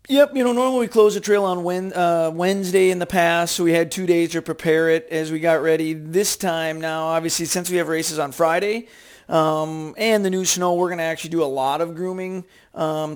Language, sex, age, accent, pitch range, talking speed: English, male, 40-59, American, 155-190 Hz, 230 wpm